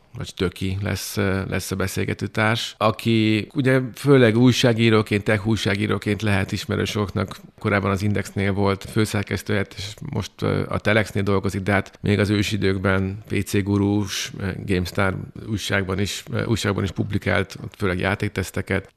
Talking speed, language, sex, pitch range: 125 wpm, Hungarian, male, 95-110 Hz